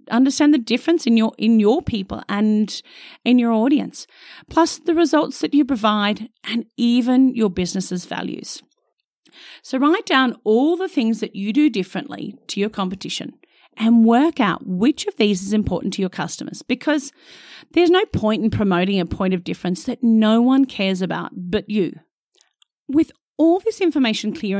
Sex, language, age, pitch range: female, English, 40-59, 200-300 Hz